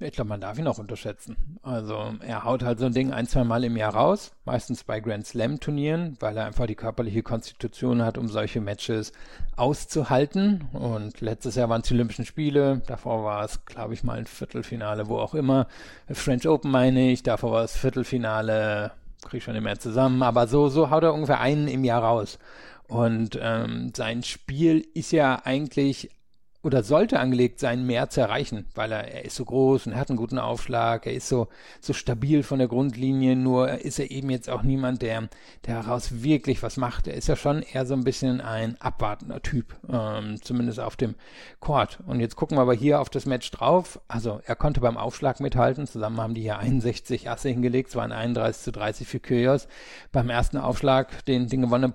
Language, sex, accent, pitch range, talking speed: German, male, German, 115-135 Hz, 200 wpm